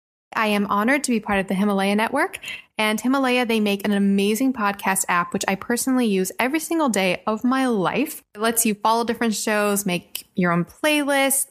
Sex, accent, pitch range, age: female, American, 190-245 Hz, 20-39